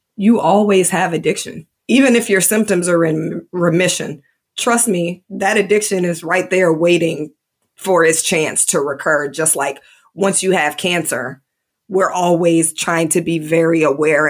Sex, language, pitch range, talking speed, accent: female, English, 165-195 Hz, 155 wpm, American